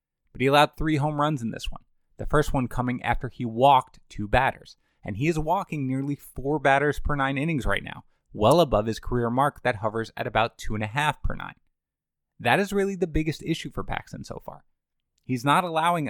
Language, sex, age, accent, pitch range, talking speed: English, male, 20-39, American, 110-145 Hz, 215 wpm